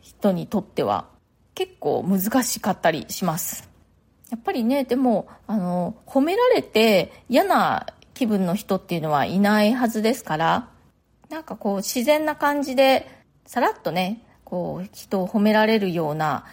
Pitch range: 185-245 Hz